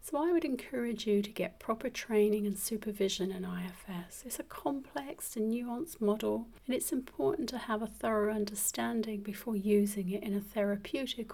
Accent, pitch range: British, 200-230 Hz